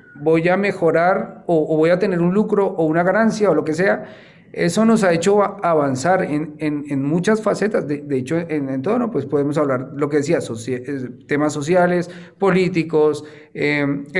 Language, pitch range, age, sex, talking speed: Spanish, 150-185 Hz, 40-59, male, 190 wpm